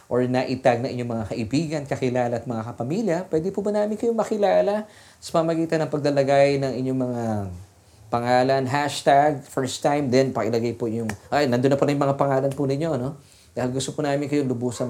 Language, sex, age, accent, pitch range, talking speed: English, male, 20-39, Filipino, 120-150 Hz, 195 wpm